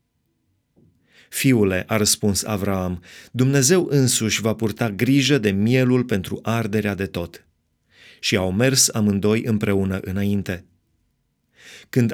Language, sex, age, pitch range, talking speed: Romanian, male, 30-49, 105-135 Hz, 110 wpm